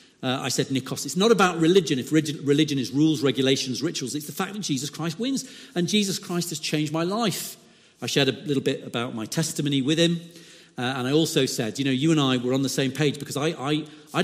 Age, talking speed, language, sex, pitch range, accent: 40-59, 240 wpm, English, male, 135-180 Hz, British